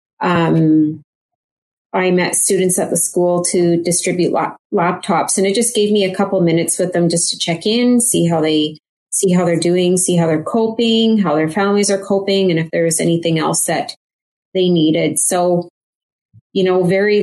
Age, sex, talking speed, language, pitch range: 30-49, female, 180 wpm, English, 165-195 Hz